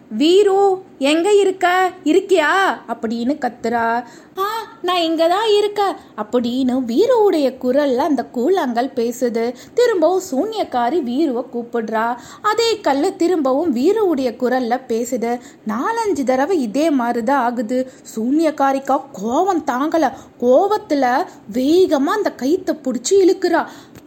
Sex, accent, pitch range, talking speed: female, native, 245-345 Hz, 100 wpm